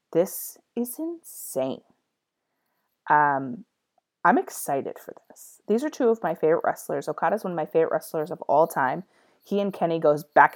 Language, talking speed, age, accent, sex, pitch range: English, 165 wpm, 30-49, American, female, 155-225 Hz